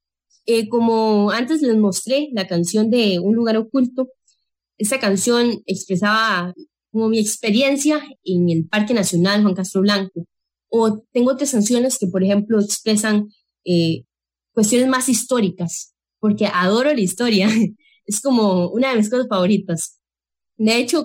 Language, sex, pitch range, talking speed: English, female, 190-260 Hz, 140 wpm